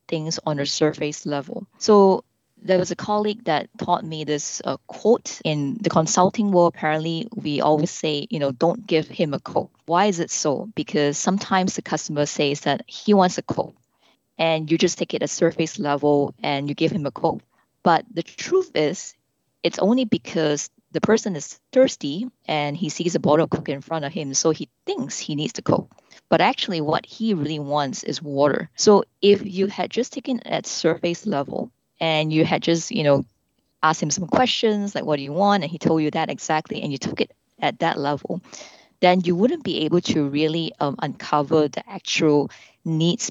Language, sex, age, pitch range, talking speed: English, female, 20-39, 150-210 Hz, 200 wpm